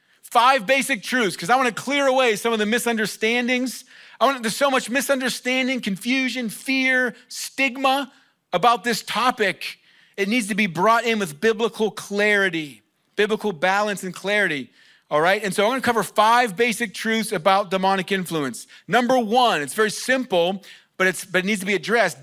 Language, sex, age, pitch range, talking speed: English, male, 40-59, 200-255 Hz, 175 wpm